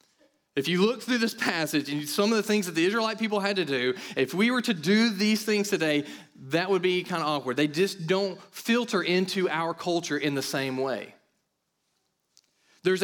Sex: male